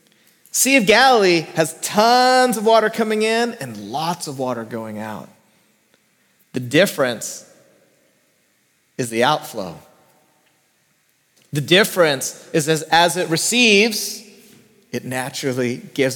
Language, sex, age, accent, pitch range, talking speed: English, male, 30-49, American, 150-210 Hz, 110 wpm